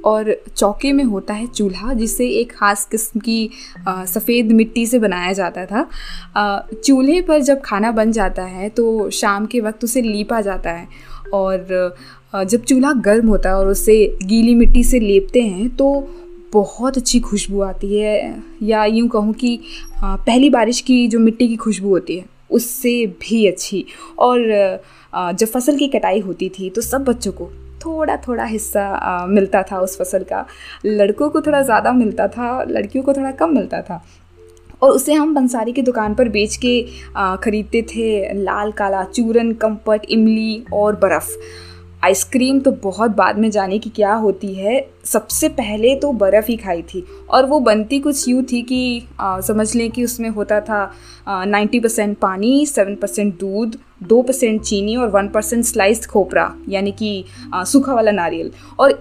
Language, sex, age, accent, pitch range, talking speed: Hindi, female, 20-39, native, 200-245 Hz, 170 wpm